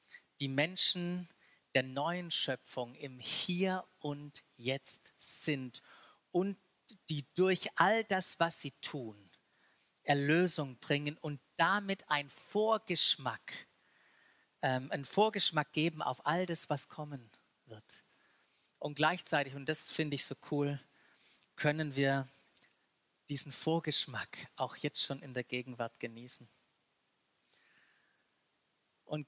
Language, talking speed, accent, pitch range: German, 110 wpm, German, 135-175 Hz